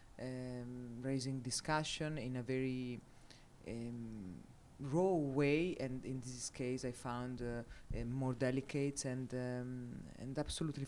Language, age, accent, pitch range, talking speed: English, 20-39, Italian, 120-145 Hz, 120 wpm